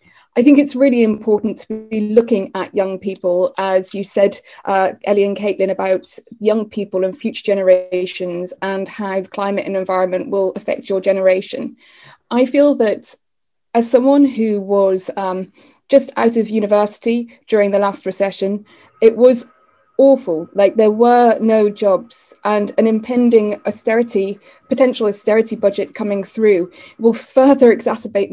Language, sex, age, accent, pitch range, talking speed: English, female, 20-39, British, 200-235 Hz, 145 wpm